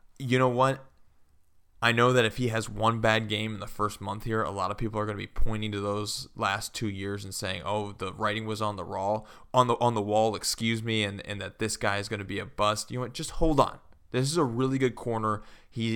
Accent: American